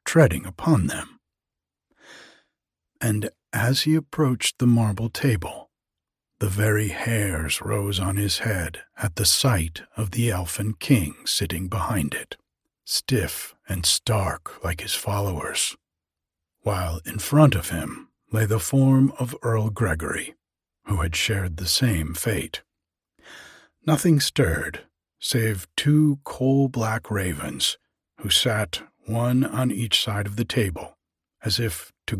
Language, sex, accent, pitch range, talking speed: English, male, American, 90-125 Hz, 125 wpm